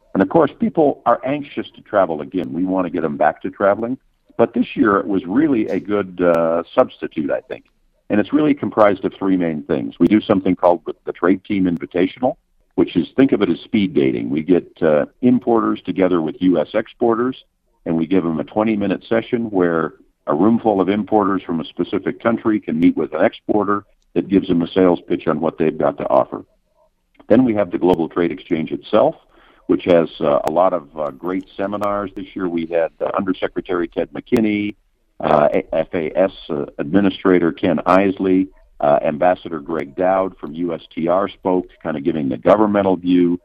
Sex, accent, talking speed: male, American, 195 wpm